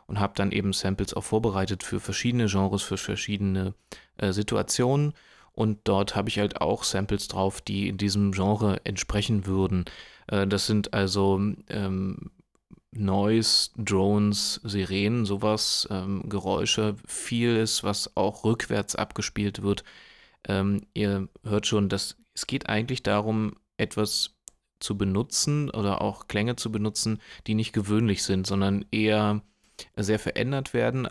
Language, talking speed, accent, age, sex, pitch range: German, 135 wpm, German, 30-49, male, 100-115 Hz